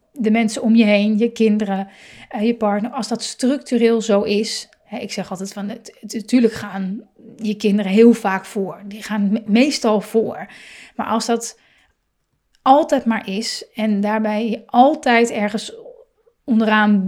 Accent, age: Dutch, 30-49